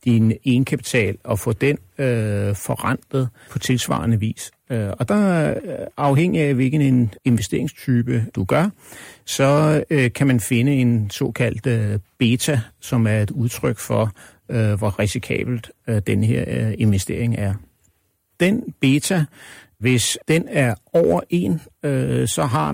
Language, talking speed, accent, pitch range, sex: Danish, 135 wpm, native, 110-130 Hz, male